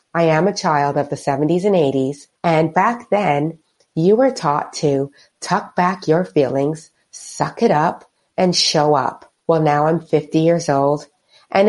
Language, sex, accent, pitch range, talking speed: English, female, American, 145-190 Hz, 170 wpm